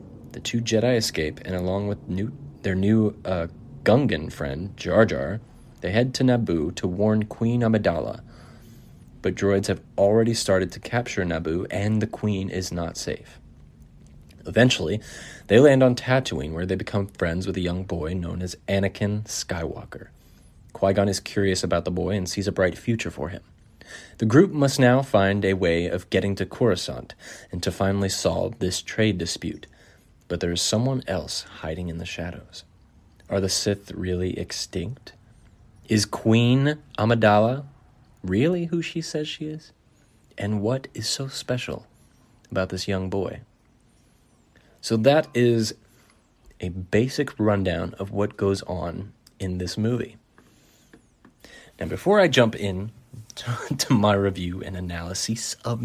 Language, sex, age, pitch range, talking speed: English, male, 30-49, 90-120 Hz, 150 wpm